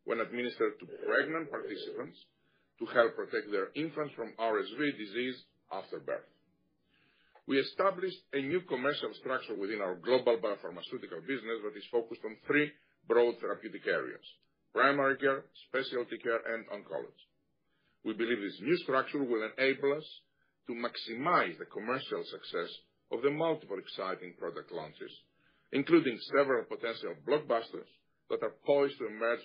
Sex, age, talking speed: male, 50-69, 140 wpm